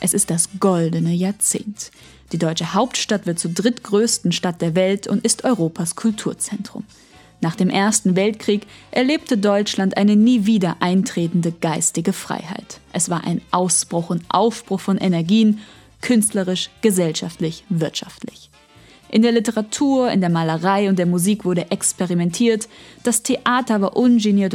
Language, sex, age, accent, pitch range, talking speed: German, female, 20-39, German, 180-220 Hz, 135 wpm